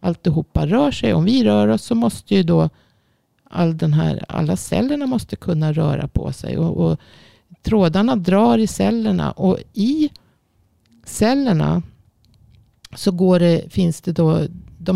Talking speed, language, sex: 155 wpm, Swedish, female